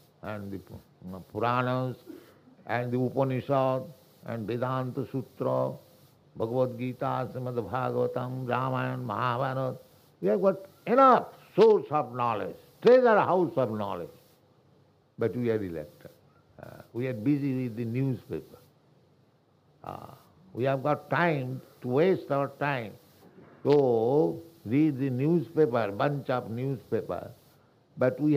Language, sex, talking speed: English, male, 120 wpm